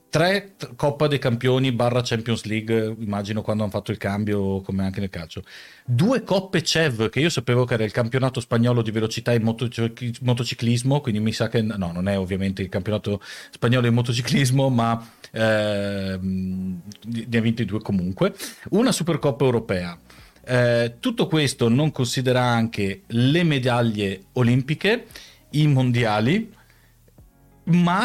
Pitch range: 110-150 Hz